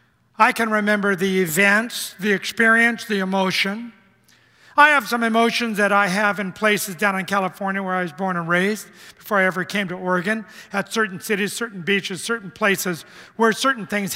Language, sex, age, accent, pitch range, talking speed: English, male, 50-69, American, 205-265 Hz, 180 wpm